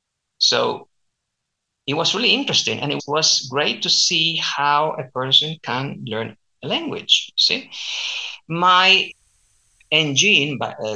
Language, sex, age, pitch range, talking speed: English, male, 50-69, 125-175 Hz, 115 wpm